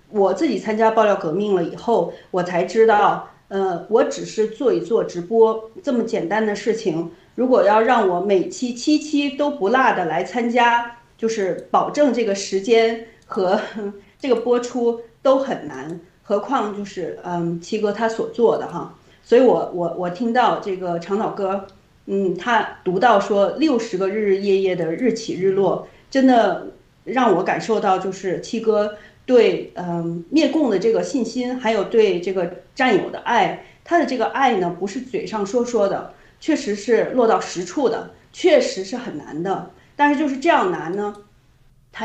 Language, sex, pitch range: Chinese, female, 195-255 Hz